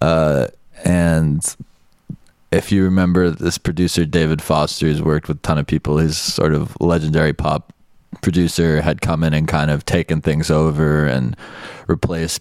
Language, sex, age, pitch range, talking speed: English, male, 20-39, 75-85 Hz, 155 wpm